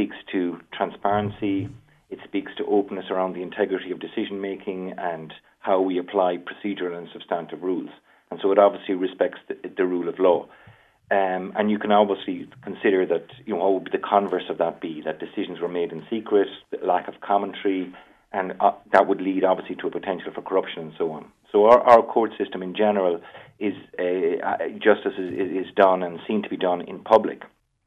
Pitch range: 90-105 Hz